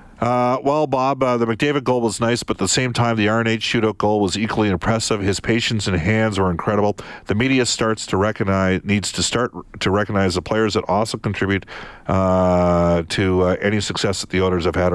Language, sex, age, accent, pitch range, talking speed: English, male, 50-69, American, 90-115 Hz, 210 wpm